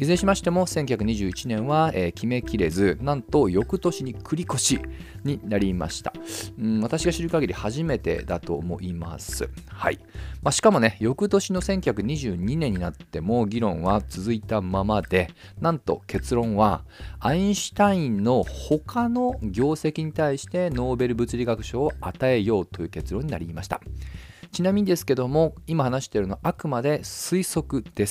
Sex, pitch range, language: male, 95-155 Hz, Japanese